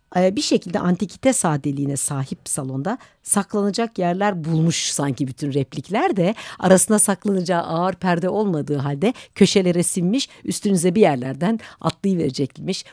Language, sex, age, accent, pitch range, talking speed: Turkish, female, 60-79, native, 140-190 Hz, 115 wpm